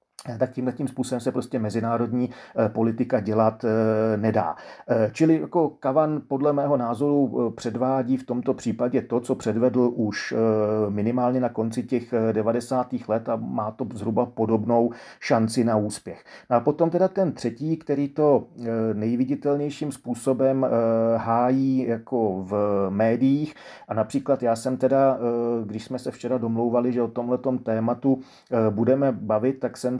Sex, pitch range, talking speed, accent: male, 115-130 Hz, 140 wpm, native